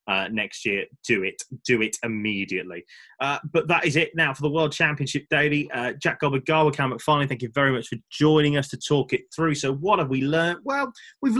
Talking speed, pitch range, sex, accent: 220 wpm, 120-175 Hz, male, British